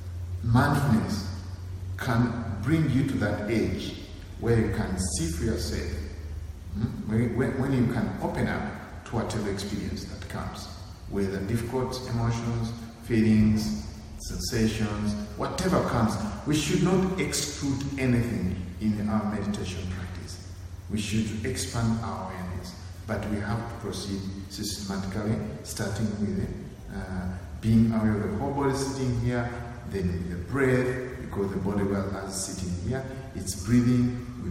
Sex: male